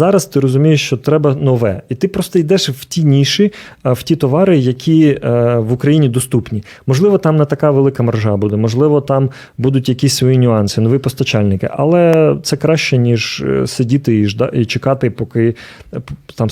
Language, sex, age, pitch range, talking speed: Ukrainian, male, 30-49, 115-140 Hz, 160 wpm